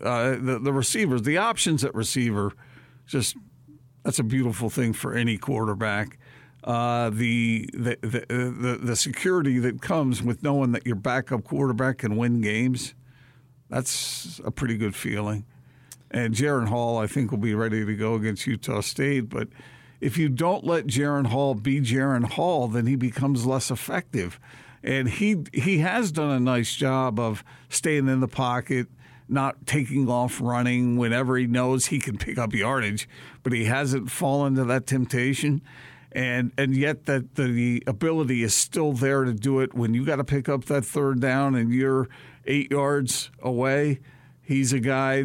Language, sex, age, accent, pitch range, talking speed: English, male, 50-69, American, 120-135 Hz, 170 wpm